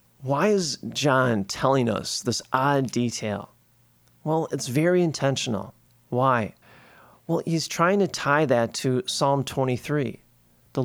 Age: 40-59